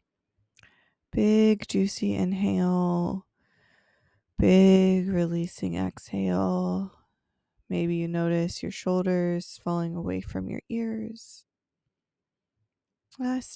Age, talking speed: 20-39, 75 wpm